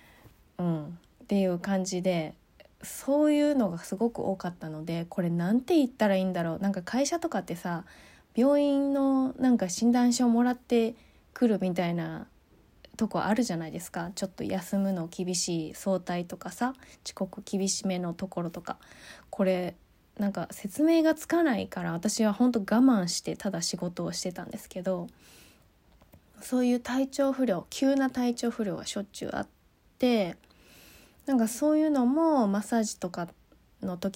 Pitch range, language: 180-250 Hz, Japanese